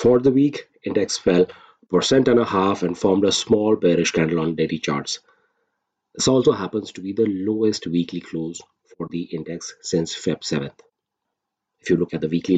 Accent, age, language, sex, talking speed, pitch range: Indian, 40-59, English, male, 185 wpm, 85-115 Hz